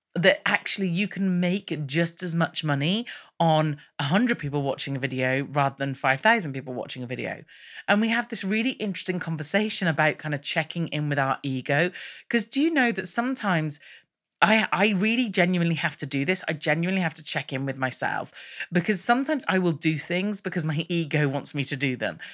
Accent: British